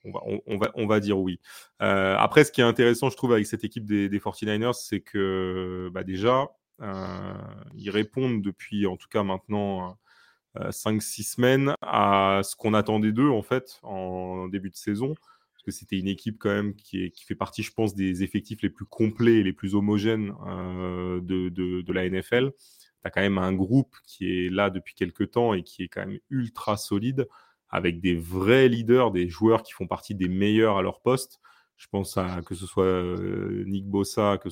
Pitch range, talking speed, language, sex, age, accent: 95-110 Hz, 200 wpm, French, male, 30-49, French